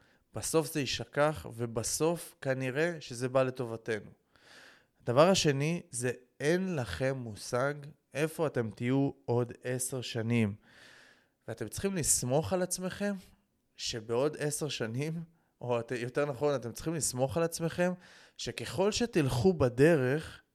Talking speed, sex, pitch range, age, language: 115 wpm, male, 120-155 Hz, 20-39, Hebrew